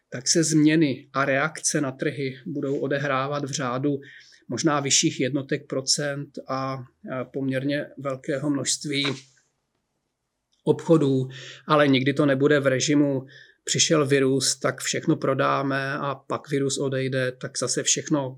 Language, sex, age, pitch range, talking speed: Czech, male, 30-49, 135-160 Hz, 125 wpm